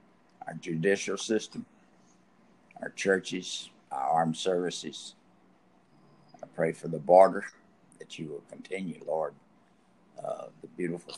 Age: 60-79